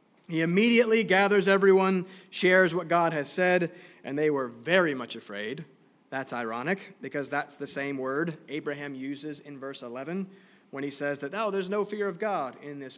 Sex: male